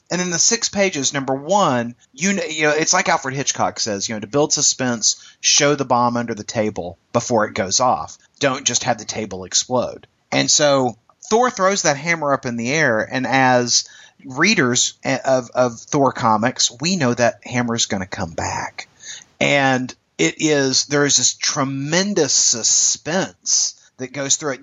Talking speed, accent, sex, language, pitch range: 185 wpm, American, male, English, 115-145 Hz